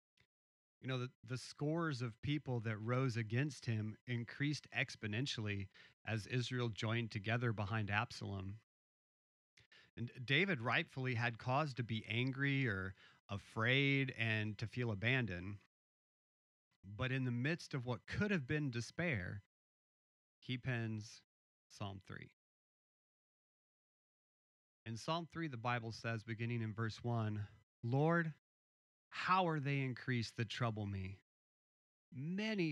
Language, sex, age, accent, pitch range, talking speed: English, male, 40-59, American, 105-135 Hz, 120 wpm